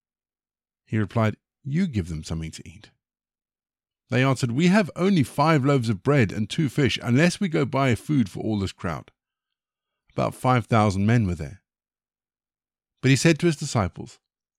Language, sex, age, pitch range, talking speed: English, male, 50-69, 100-135 Hz, 170 wpm